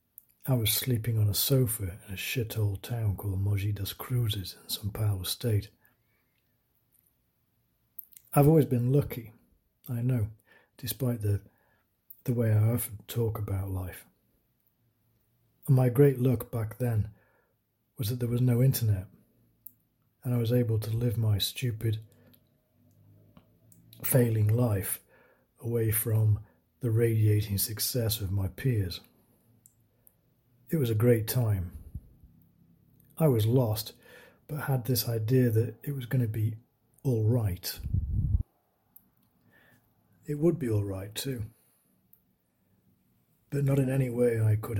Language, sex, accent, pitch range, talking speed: English, male, British, 105-125 Hz, 130 wpm